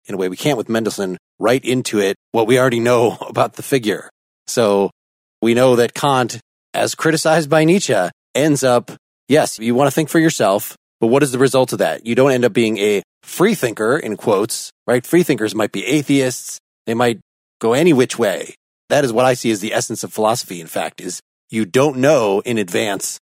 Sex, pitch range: male, 110-130 Hz